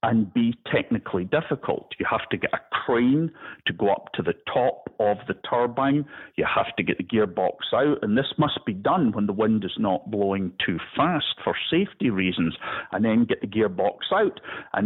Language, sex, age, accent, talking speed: English, male, 50-69, British, 200 wpm